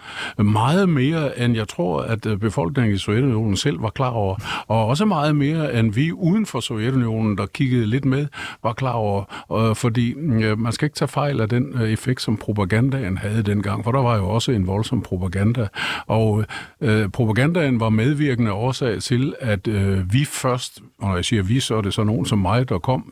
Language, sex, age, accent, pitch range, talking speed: Danish, male, 50-69, native, 105-130 Hz, 185 wpm